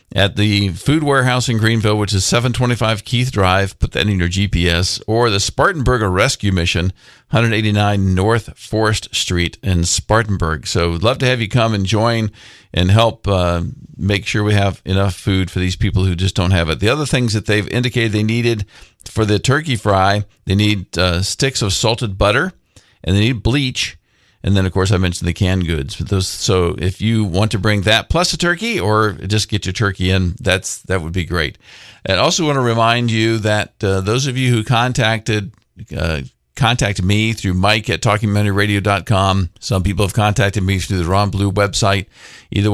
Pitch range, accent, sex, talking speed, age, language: 95-115 Hz, American, male, 195 wpm, 50-69, English